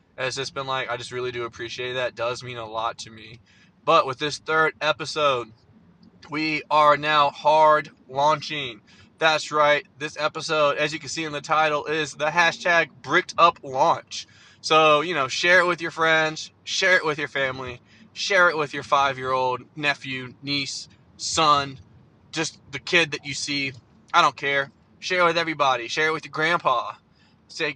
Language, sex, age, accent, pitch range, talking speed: English, male, 20-39, American, 130-160 Hz, 185 wpm